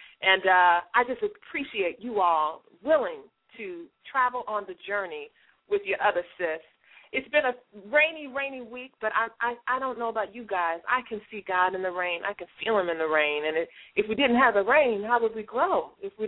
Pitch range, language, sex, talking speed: 195-290 Hz, English, female, 220 wpm